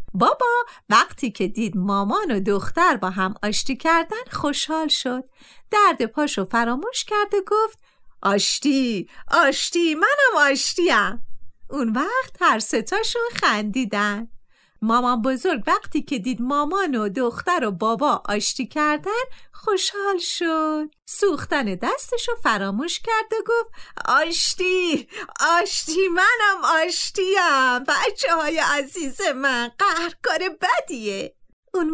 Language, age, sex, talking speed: Persian, 40-59, female, 110 wpm